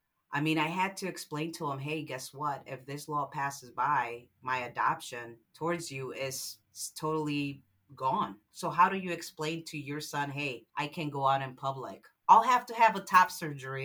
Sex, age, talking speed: female, 40-59, 195 wpm